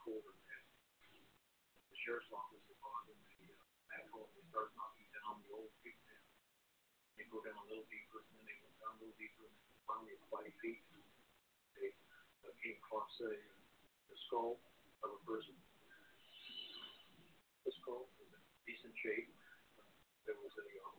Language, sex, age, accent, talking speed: English, male, 50-69, American, 165 wpm